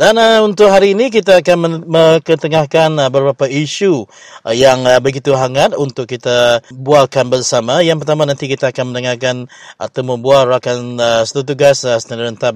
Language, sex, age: English, male, 30-49